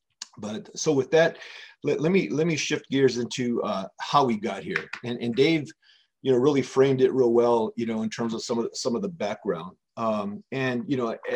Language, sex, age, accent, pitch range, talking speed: English, male, 40-59, American, 120-160 Hz, 230 wpm